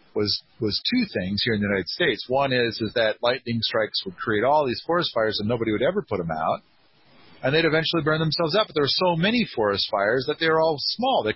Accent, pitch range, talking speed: American, 125-160 Hz, 250 wpm